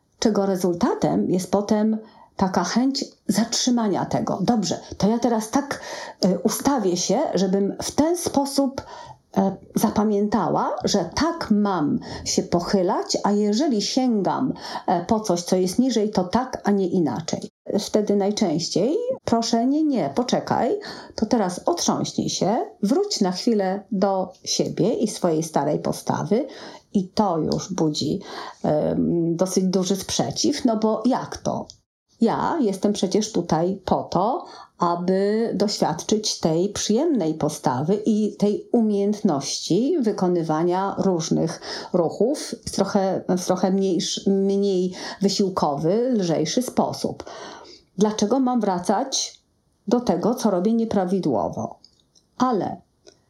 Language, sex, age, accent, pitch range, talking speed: Polish, female, 40-59, native, 185-230 Hz, 115 wpm